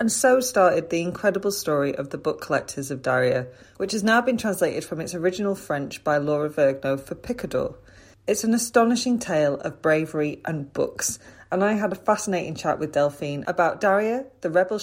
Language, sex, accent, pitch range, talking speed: English, female, British, 150-200 Hz, 185 wpm